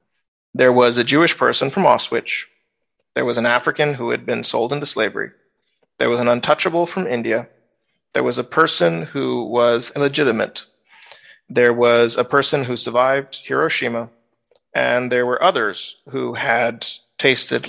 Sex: male